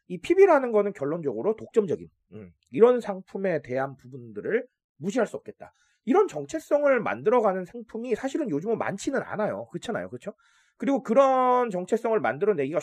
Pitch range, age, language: 175-245 Hz, 30-49, Korean